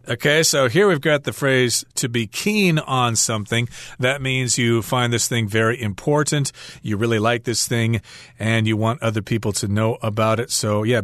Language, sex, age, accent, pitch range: Chinese, male, 40-59, American, 115-150 Hz